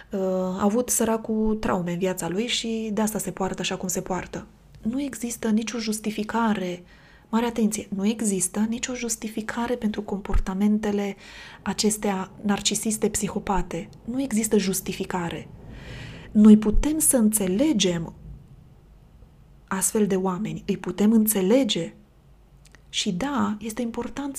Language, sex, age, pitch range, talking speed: Romanian, female, 20-39, 195-230 Hz, 120 wpm